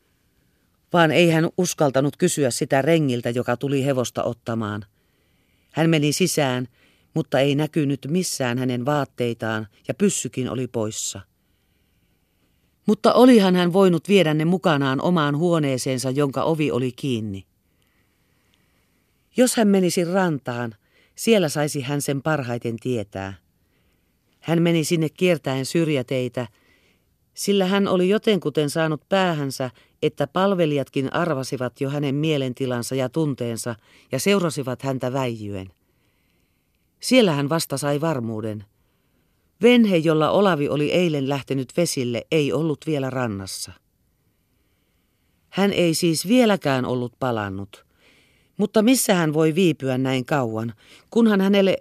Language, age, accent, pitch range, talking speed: Finnish, 40-59, native, 125-180 Hz, 115 wpm